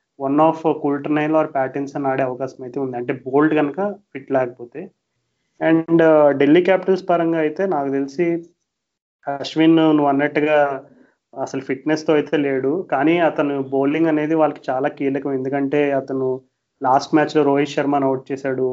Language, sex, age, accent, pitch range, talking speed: Telugu, male, 30-49, native, 135-155 Hz, 150 wpm